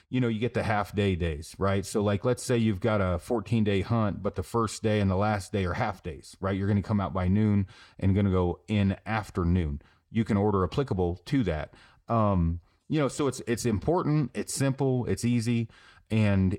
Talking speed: 225 wpm